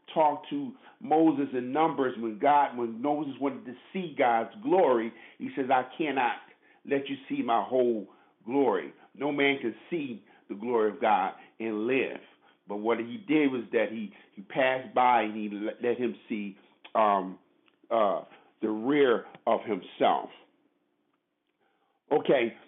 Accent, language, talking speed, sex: American, English, 150 wpm, male